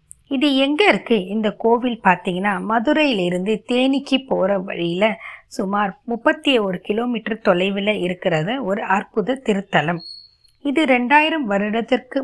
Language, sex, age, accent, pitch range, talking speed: Tamil, female, 20-39, native, 185-245 Hz, 105 wpm